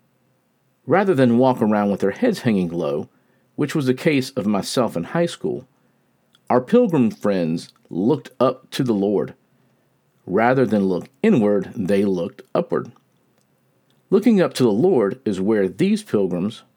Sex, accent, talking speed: male, American, 150 wpm